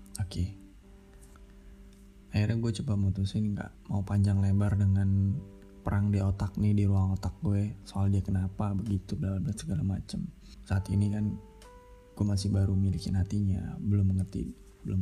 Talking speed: 145 wpm